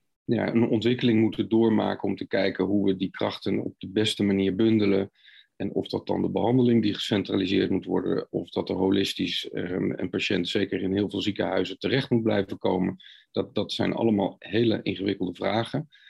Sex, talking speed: male, 185 wpm